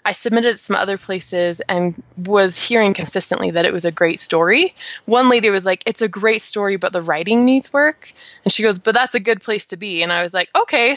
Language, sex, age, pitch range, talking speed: English, female, 20-39, 180-240 Hz, 245 wpm